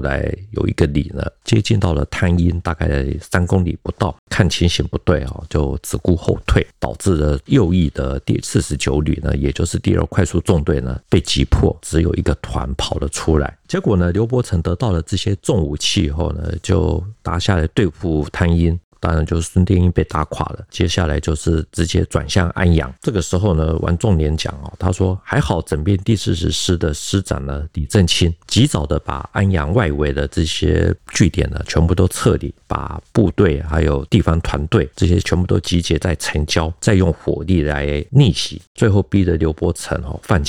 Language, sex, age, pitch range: Chinese, male, 50-69, 80-95 Hz